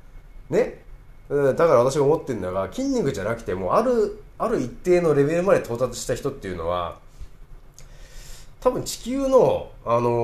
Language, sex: Japanese, male